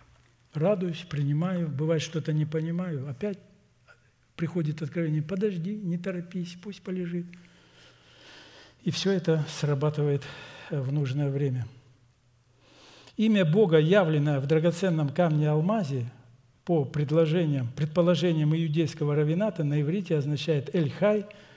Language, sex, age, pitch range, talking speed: Russian, male, 60-79, 140-170 Hz, 100 wpm